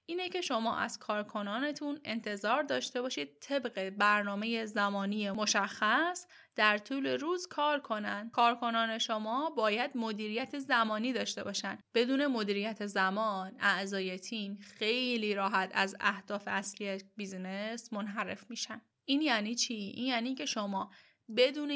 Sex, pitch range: female, 205-245 Hz